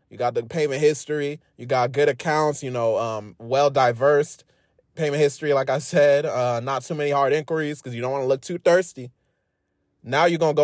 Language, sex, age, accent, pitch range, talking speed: English, male, 20-39, American, 115-150 Hz, 205 wpm